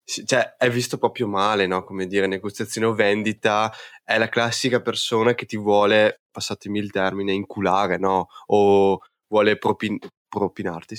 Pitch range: 95-110 Hz